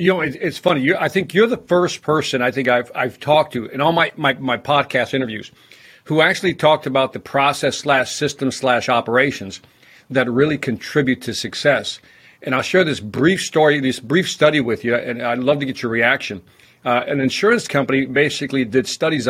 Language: English